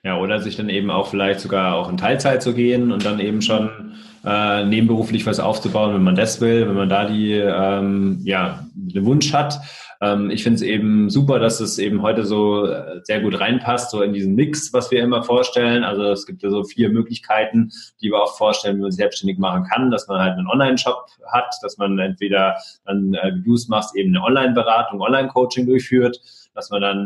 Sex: male